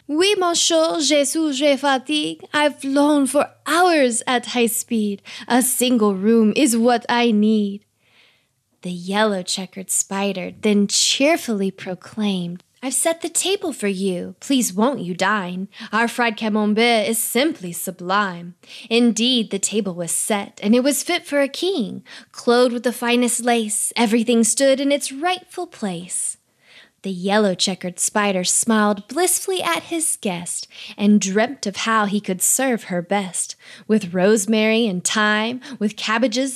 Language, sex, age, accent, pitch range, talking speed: English, female, 20-39, American, 205-280 Hz, 145 wpm